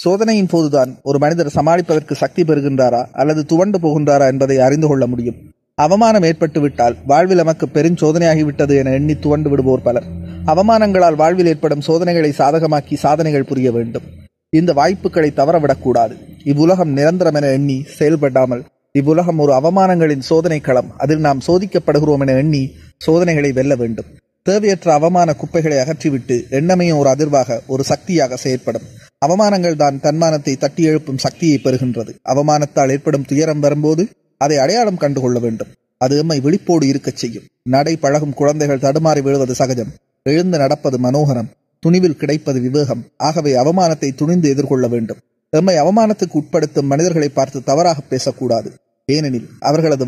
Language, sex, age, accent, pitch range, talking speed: Tamil, male, 30-49, native, 135-160 Hz, 125 wpm